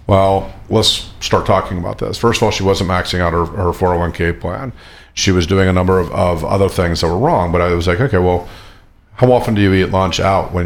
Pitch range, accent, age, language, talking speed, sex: 85-110 Hz, American, 50-69, English, 240 wpm, male